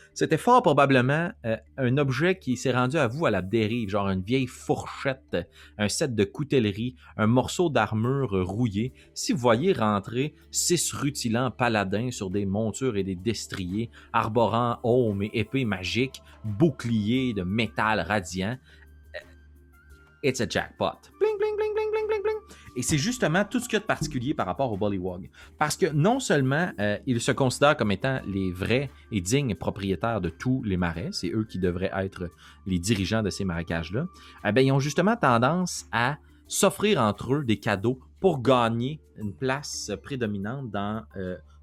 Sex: male